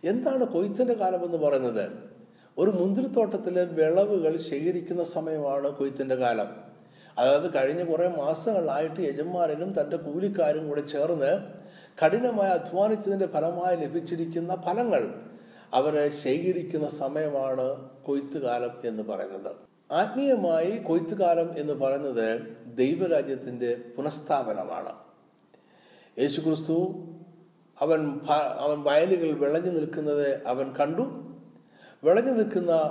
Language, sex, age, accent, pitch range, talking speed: Malayalam, male, 60-79, native, 130-180 Hz, 90 wpm